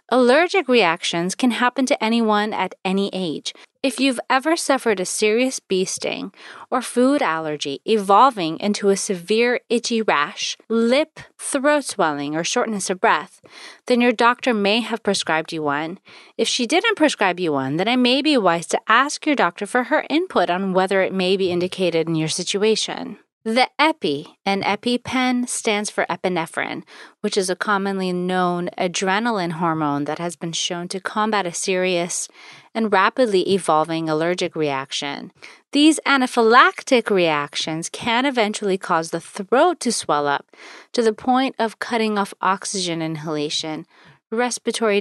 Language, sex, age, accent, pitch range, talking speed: English, female, 30-49, American, 175-245 Hz, 155 wpm